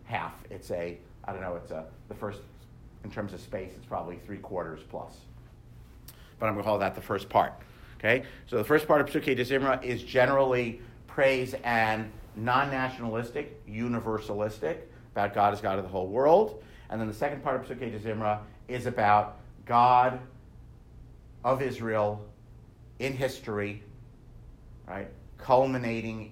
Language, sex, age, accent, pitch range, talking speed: English, male, 50-69, American, 105-125 Hz, 160 wpm